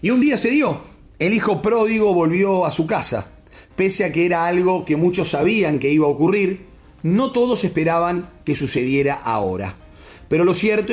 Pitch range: 145-200 Hz